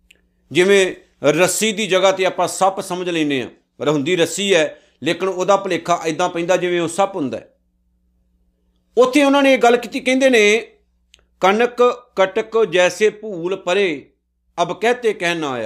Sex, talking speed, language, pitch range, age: male, 150 wpm, Punjabi, 135-200 Hz, 50-69